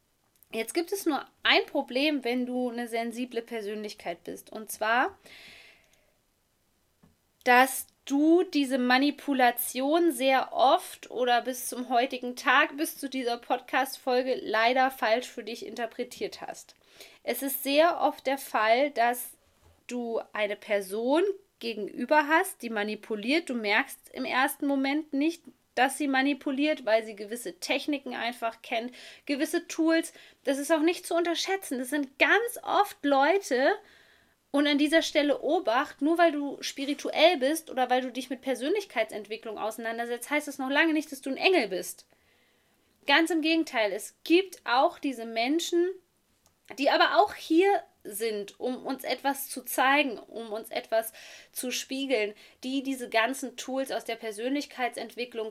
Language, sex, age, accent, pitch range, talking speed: German, female, 20-39, German, 235-315 Hz, 145 wpm